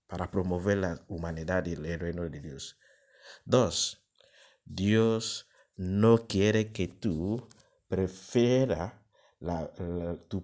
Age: 50-69